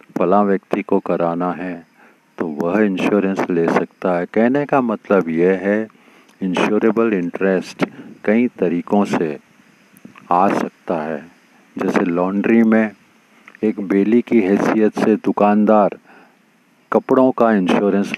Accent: native